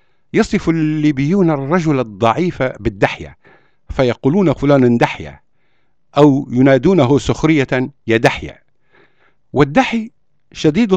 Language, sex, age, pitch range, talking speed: Arabic, male, 50-69, 120-170 Hz, 80 wpm